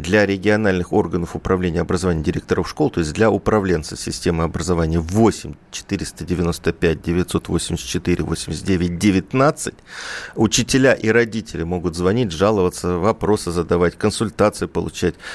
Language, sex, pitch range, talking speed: Russian, male, 85-105 Hz, 110 wpm